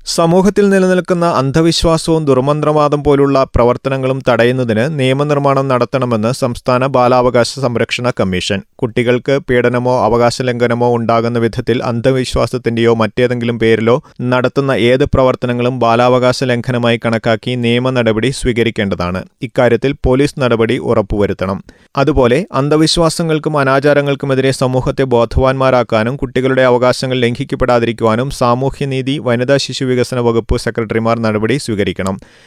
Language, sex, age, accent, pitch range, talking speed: Malayalam, male, 30-49, native, 115-135 Hz, 90 wpm